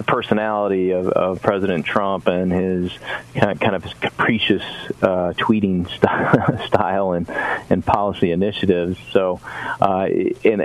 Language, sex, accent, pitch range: English, male, American, 95-125 Hz